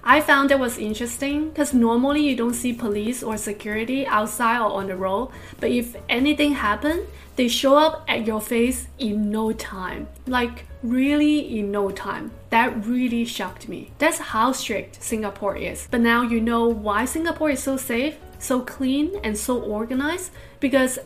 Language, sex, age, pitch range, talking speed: English, female, 20-39, 230-295 Hz, 170 wpm